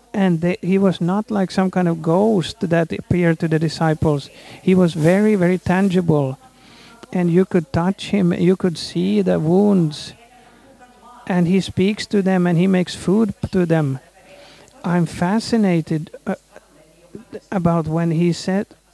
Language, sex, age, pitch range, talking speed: Swedish, male, 50-69, 170-200 Hz, 150 wpm